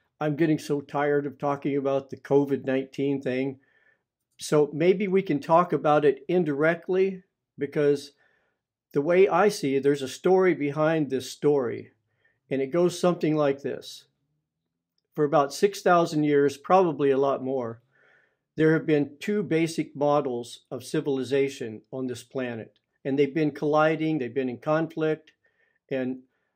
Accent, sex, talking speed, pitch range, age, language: American, male, 145 wpm, 135-160 Hz, 50-69, English